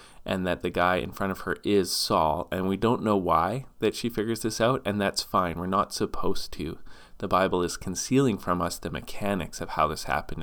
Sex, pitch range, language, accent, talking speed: male, 85-105 Hz, English, American, 225 wpm